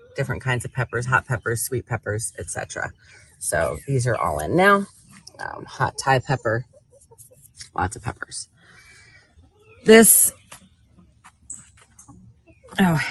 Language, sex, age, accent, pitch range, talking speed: English, female, 30-49, American, 130-175 Hz, 110 wpm